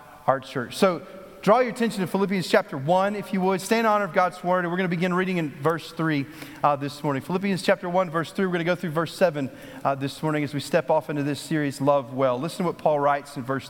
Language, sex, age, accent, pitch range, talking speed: English, male, 40-59, American, 135-180 Hz, 270 wpm